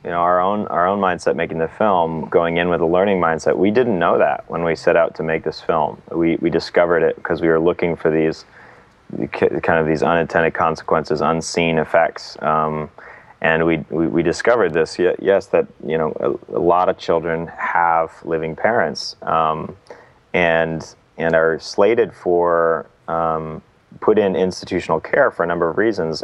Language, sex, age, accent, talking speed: English, male, 30-49, American, 185 wpm